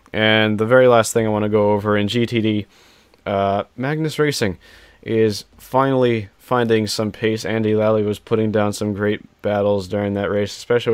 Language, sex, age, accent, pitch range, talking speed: English, male, 20-39, American, 100-115 Hz, 175 wpm